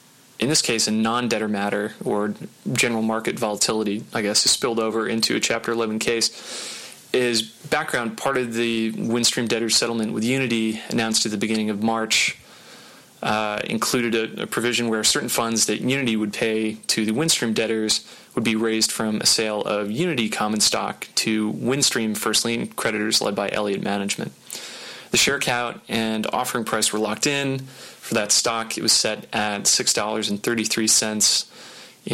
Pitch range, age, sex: 110-115 Hz, 20-39, male